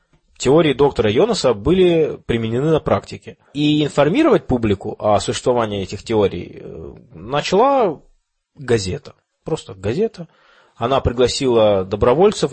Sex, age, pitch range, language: male, 20-39, 100-145 Hz, Russian